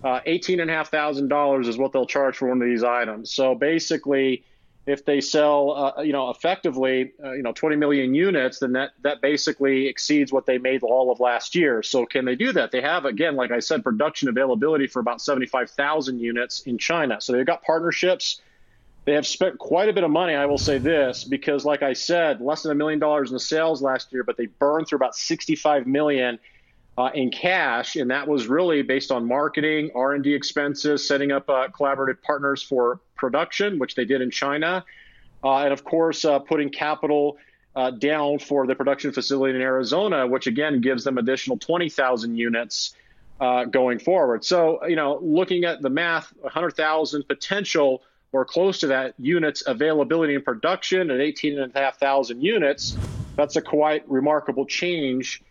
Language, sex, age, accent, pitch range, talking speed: English, male, 40-59, American, 130-155 Hz, 180 wpm